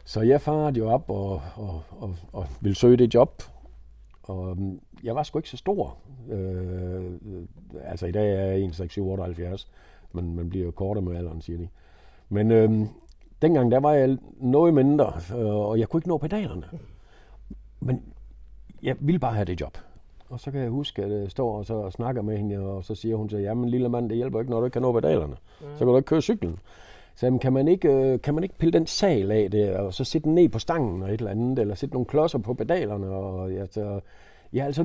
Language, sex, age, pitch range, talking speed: Danish, male, 50-69, 95-130 Hz, 220 wpm